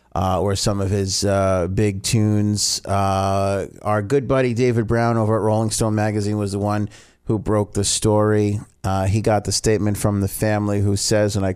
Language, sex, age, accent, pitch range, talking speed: English, male, 30-49, American, 105-125 Hz, 195 wpm